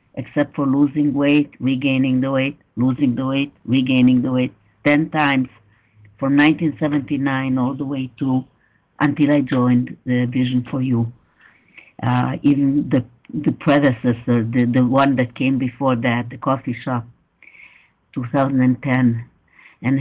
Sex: female